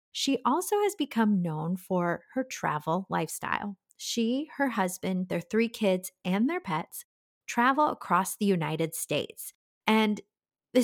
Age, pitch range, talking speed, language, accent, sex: 30-49, 180-235 Hz, 140 wpm, English, American, female